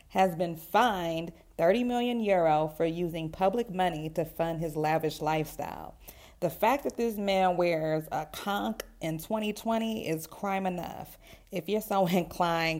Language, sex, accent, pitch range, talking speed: English, female, American, 155-180 Hz, 150 wpm